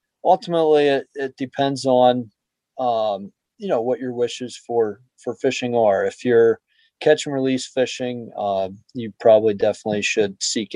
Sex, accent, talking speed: male, American, 150 wpm